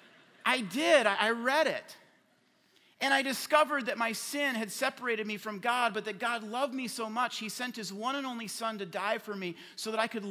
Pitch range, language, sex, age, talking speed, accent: 185-250 Hz, English, male, 40-59, 220 wpm, American